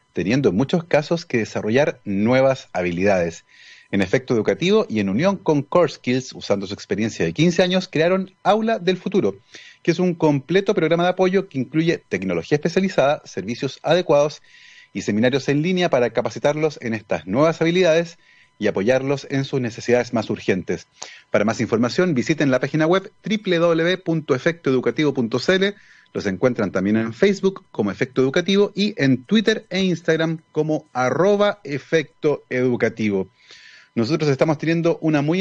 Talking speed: 145 wpm